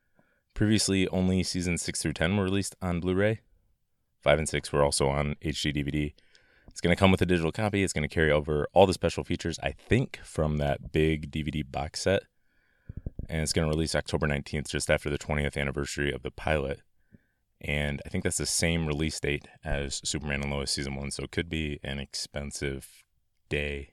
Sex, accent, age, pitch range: male, American, 30-49, 70-90 Hz